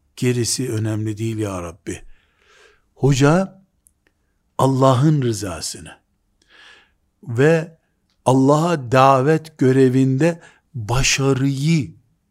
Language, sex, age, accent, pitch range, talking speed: Turkish, male, 60-79, native, 130-180 Hz, 65 wpm